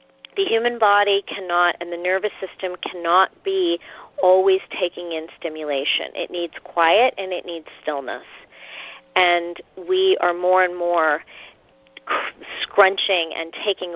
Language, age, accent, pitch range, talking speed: English, 40-59, American, 160-190 Hz, 130 wpm